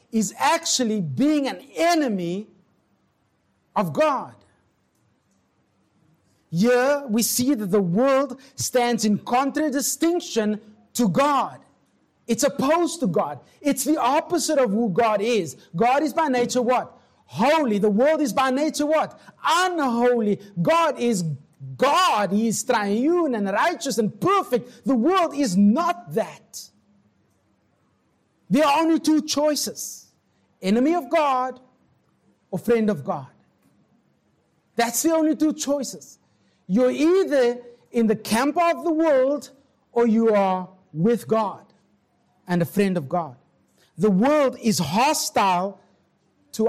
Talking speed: 125 wpm